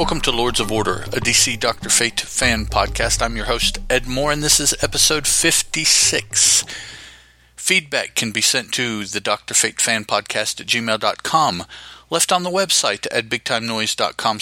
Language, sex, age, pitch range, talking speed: English, male, 40-59, 95-130 Hz, 150 wpm